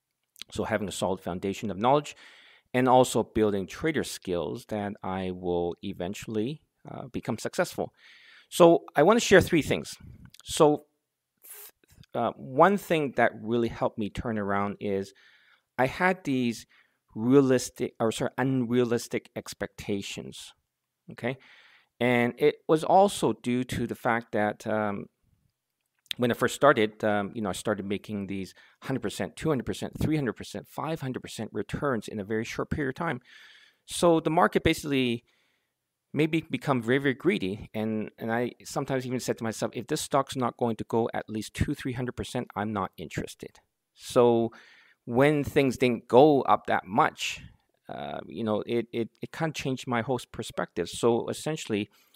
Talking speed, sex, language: 155 wpm, male, English